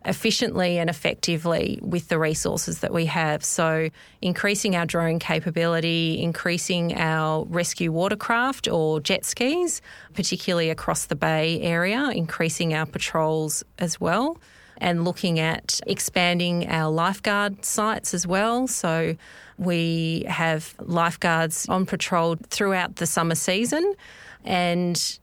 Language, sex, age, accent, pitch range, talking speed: English, female, 30-49, Australian, 165-195 Hz, 120 wpm